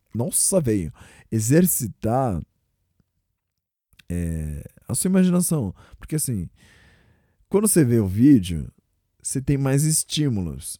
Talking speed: 105 wpm